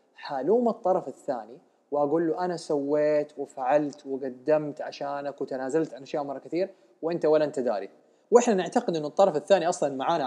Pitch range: 135-185 Hz